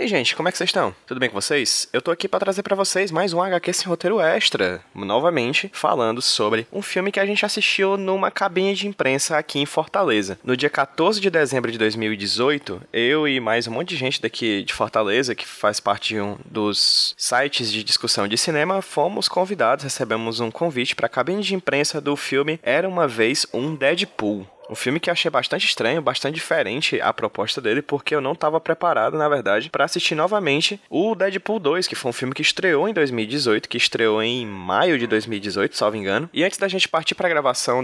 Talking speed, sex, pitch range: 215 wpm, male, 115-175 Hz